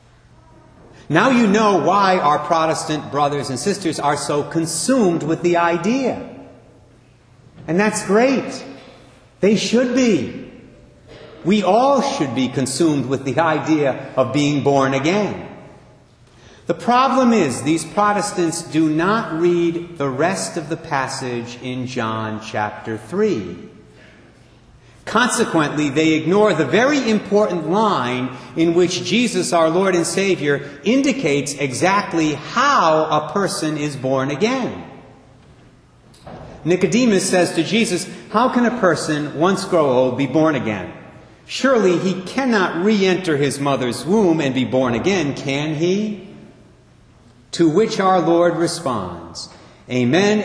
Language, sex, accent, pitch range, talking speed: English, male, American, 135-195 Hz, 125 wpm